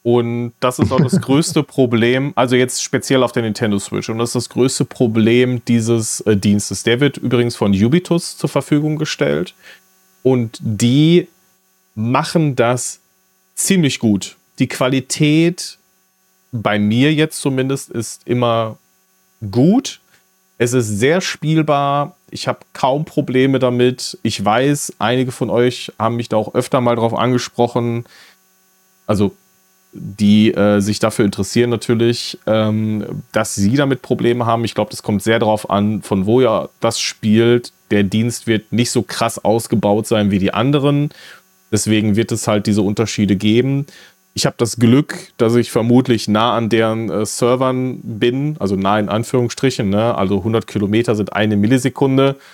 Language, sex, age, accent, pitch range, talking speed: German, male, 30-49, German, 110-140 Hz, 150 wpm